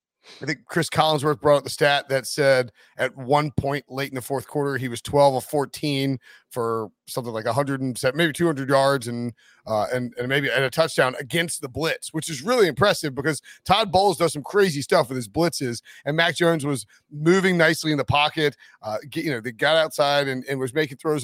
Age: 30-49